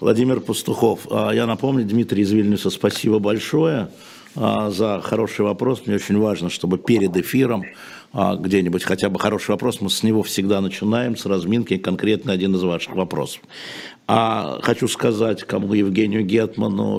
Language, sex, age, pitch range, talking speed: Russian, male, 60-79, 105-130 Hz, 140 wpm